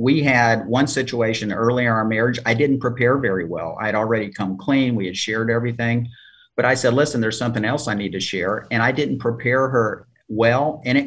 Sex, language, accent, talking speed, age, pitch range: male, English, American, 220 wpm, 50-69, 105-135 Hz